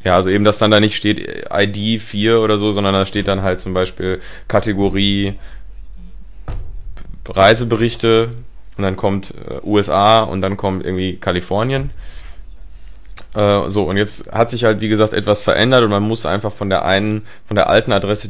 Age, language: 20-39, German